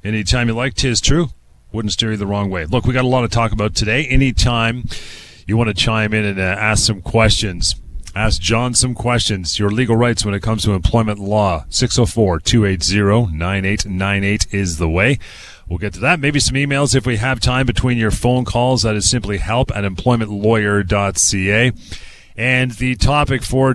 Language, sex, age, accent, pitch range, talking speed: English, male, 40-59, American, 100-125 Hz, 185 wpm